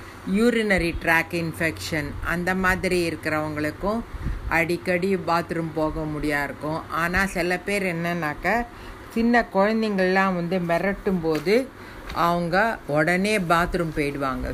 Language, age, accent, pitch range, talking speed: Tamil, 50-69, native, 155-185 Hz, 90 wpm